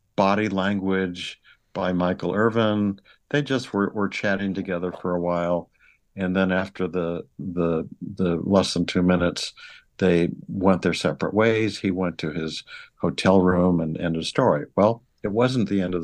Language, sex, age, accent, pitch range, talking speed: English, male, 60-79, American, 90-105 Hz, 165 wpm